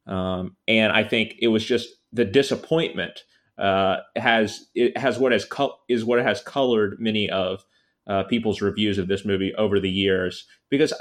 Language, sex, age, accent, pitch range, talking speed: English, male, 30-49, American, 100-120 Hz, 175 wpm